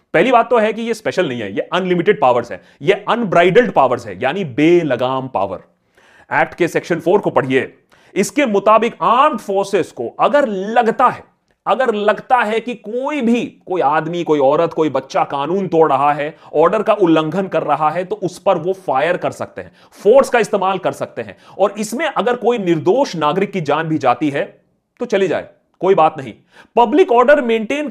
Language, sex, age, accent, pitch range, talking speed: Hindi, male, 30-49, native, 160-240 Hz, 155 wpm